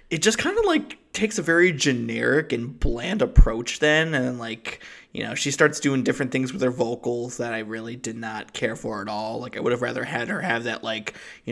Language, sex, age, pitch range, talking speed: English, male, 20-39, 115-145 Hz, 235 wpm